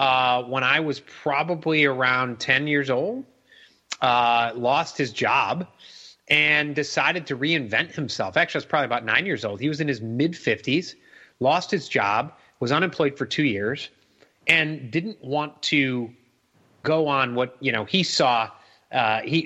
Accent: American